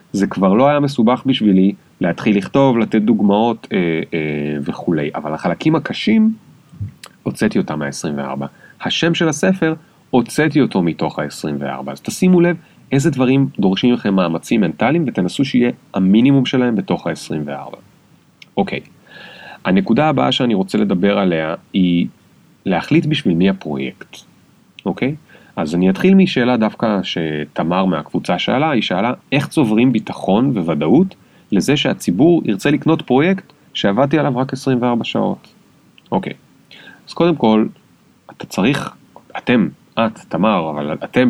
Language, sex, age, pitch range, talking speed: Hebrew, male, 30-49, 95-150 Hz, 130 wpm